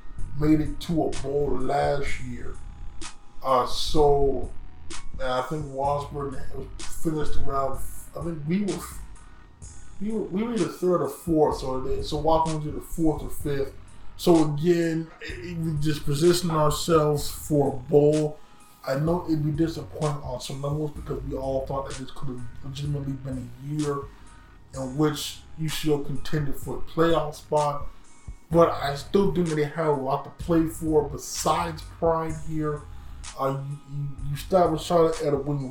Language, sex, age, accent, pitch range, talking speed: English, male, 20-39, American, 135-160 Hz, 165 wpm